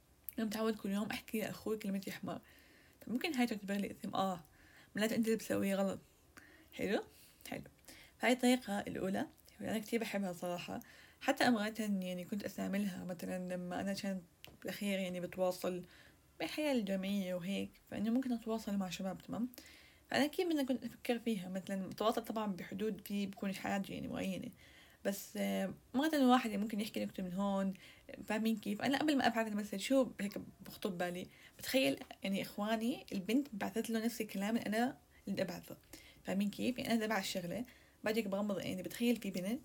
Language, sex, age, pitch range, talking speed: Arabic, female, 20-39, 195-240 Hz, 165 wpm